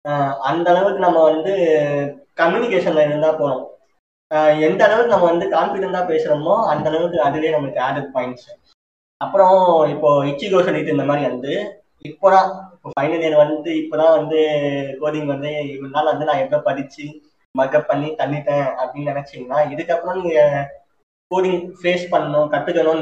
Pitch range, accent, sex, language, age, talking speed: 145-175 Hz, native, male, Tamil, 20-39, 135 wpm